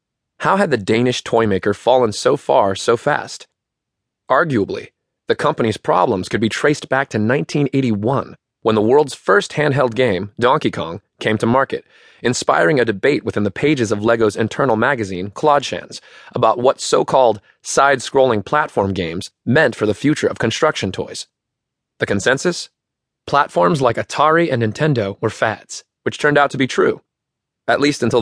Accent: American